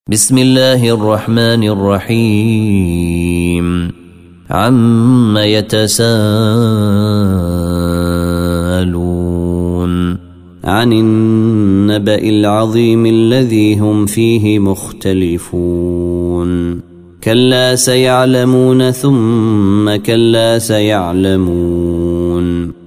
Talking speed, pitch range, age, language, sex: 45 wpm, 90-115 Hz, 30-49, Arabic, male